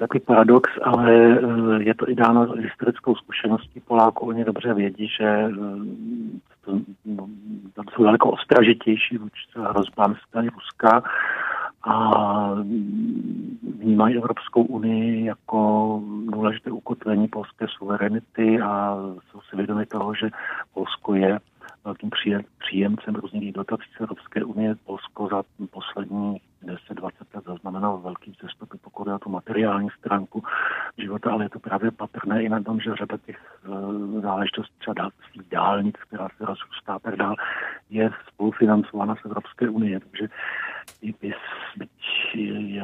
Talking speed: 125 wpm